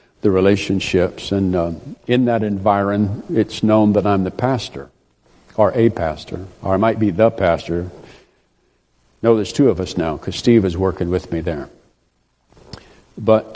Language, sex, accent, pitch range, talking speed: English, male, American, 95-115 Hz, 160 wpm